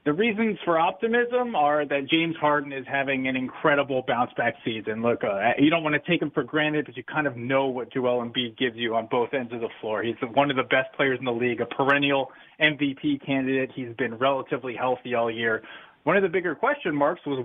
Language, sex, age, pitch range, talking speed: English, male, 30-49, 130-165 Hz, 225 wpm